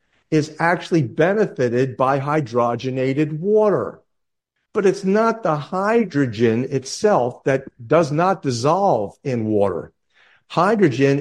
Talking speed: 100 wpm